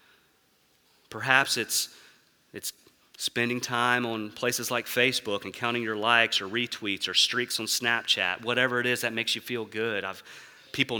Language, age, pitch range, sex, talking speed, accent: English, 30-49, 105-125 Hz, male, 155 wpm, American